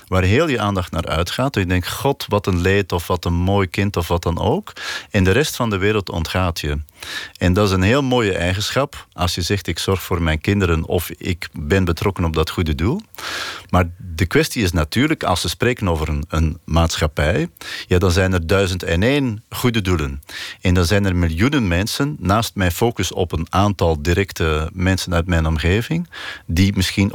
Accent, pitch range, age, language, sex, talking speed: Dutch, 85-105 Hz, 40-59, Dutch, male, 205 wpm